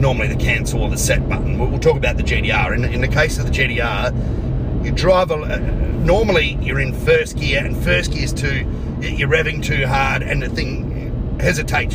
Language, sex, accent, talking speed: English, male, Australian, 205 wpm